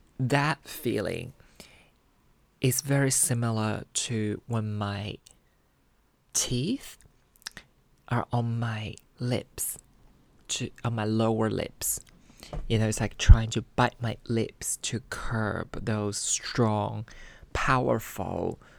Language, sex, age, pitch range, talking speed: English, male, 20-39, 110-140 Hz, 100 wpm